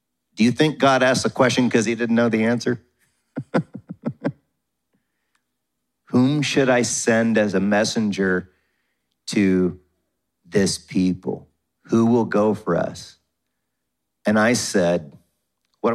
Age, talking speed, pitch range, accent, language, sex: 50-69, 120 wpm, 95-130 Hz, American, English, male